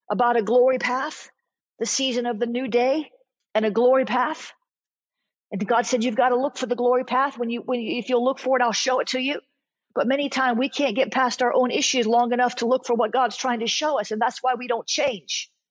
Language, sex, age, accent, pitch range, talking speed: English, female, 40-59, American, 200-255 Hz, 250 wpm